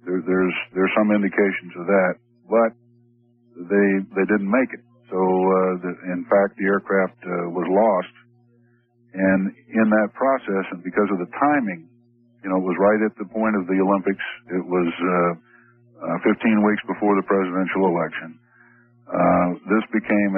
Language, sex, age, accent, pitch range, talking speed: English, male, 50-69, American, 90-110 Hz, 165 wpm